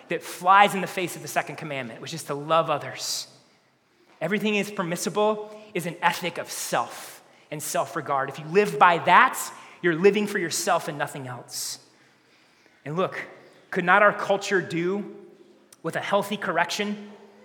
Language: English